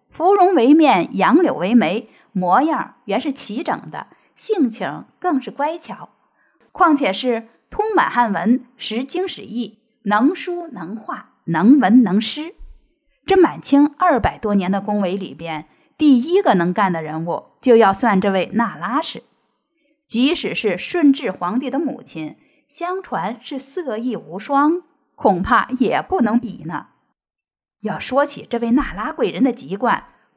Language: Chinese